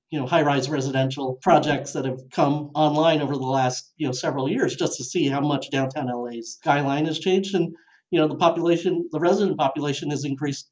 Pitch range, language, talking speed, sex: 140-190 Hz, English, 205 wpm, male